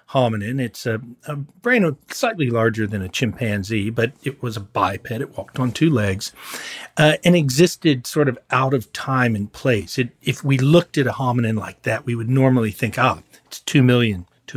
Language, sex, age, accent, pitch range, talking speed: English, male, 40-59, American, 110-140 Hz, 200 wpm